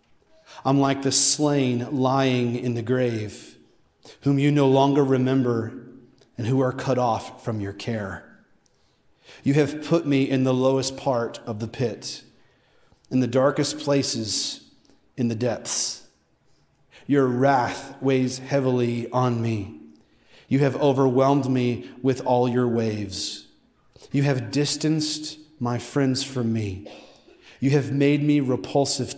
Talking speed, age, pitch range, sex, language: 135 wpm, 40-59, 120-135 Hz, male, English